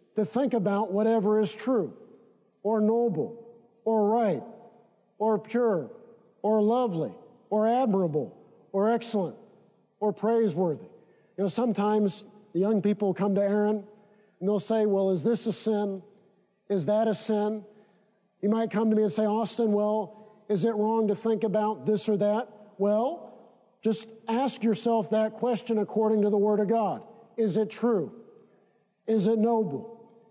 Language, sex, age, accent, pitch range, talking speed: English, male, 50-69, American, 210-230 Hz, 150 wpm